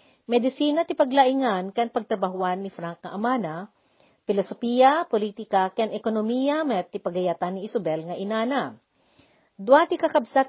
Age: 50-69